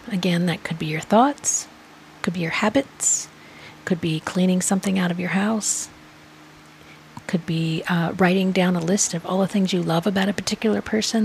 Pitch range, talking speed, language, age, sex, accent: 175-215 Hz, 185 wpm, English, 40-59, female, American